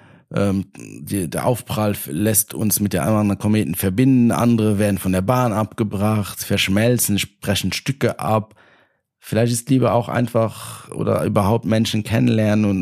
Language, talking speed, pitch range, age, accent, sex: German, 160 wpm, 95-115 Hz, 50-69, German, male